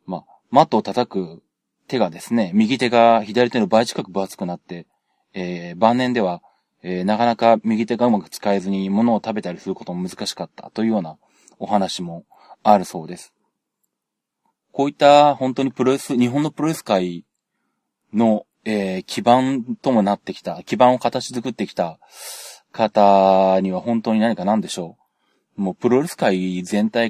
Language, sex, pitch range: Japanese, male, 95-120 Hz